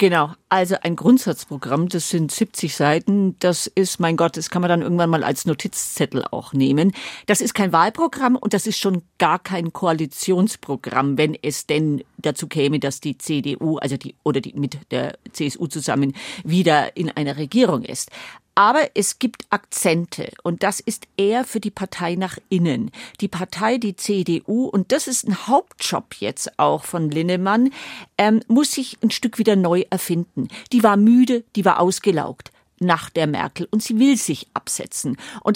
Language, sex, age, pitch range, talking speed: German, female, 50-69, 165-225 Hz, 175 wpm